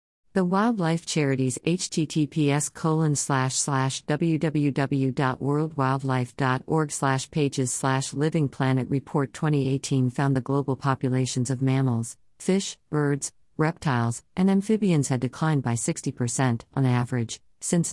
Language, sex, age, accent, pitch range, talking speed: English, female, 50-69, American, 130-155 Hz, 115 wpm